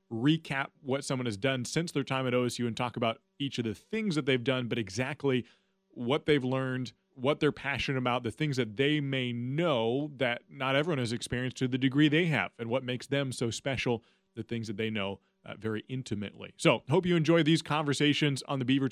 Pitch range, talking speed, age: 120-150 Hz, 215 wpm, 30-49